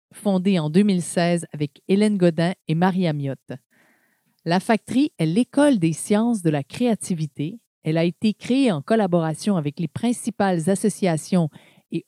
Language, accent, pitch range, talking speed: French, Canadian, 165-215 Hz, 145 wpm